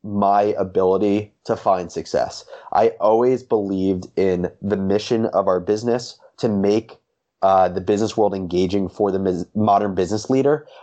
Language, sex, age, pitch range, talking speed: English, male, 20-39, 95-115 Hz, 145 wpm